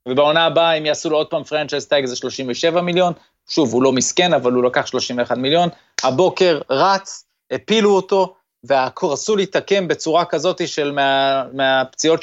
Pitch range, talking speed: 130-175 Hz, 155 wpm